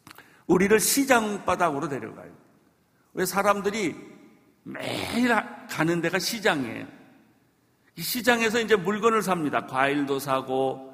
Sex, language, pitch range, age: male, Korean, 140-210 Hz, 50-69